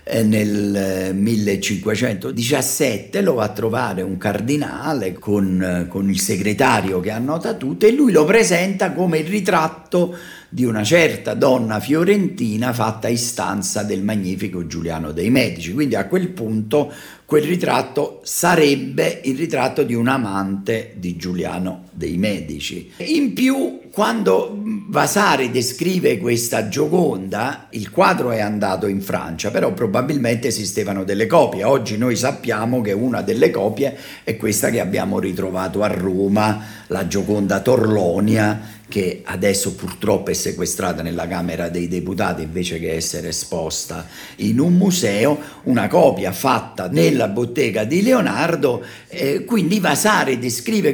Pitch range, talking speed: 95-150 Hz, 130 wpm